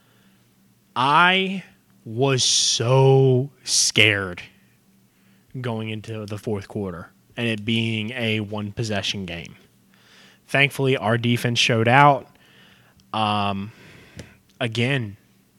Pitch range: 105-125 Hz